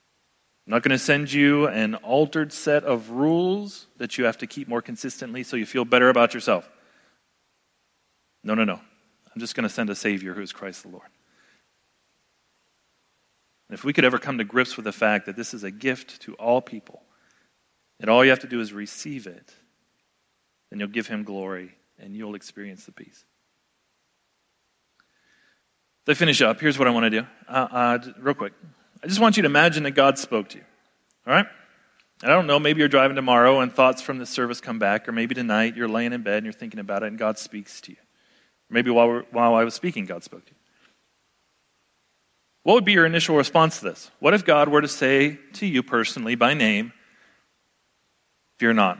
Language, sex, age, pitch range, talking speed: English, male, 40-59, 110-145 Hz, 200 wpm